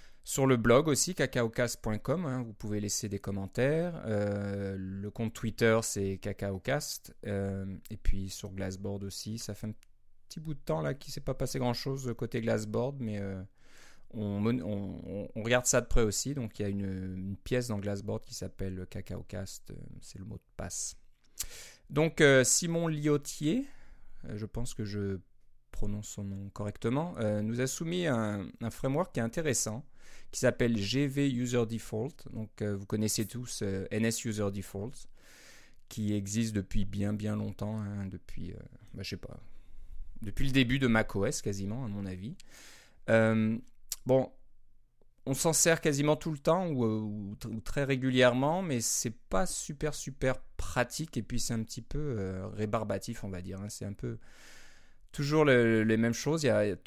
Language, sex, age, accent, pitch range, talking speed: French, male, 30-49, French, 100-130 Hz, 185 wpm